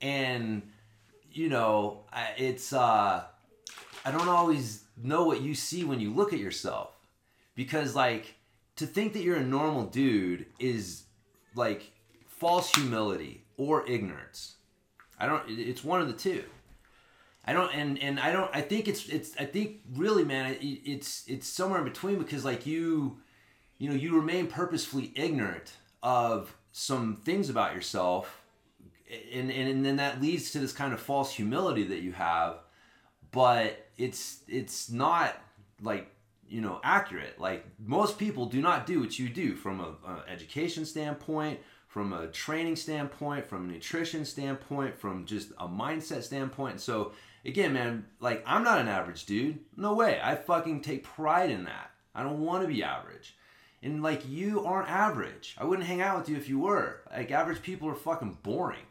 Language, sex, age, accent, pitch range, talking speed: English, male, 30-49, American, 110-160 Hz, 170 wpm